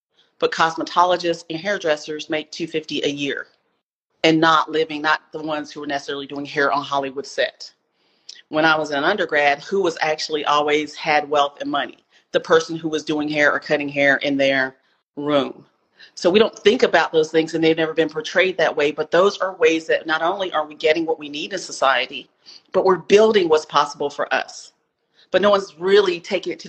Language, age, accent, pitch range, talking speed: English, 40-59, American, 150-175 Hz, 200 wpm